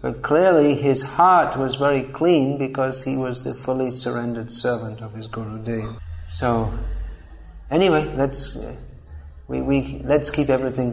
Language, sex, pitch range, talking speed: English, male, 120-135 Hz, 145 wpm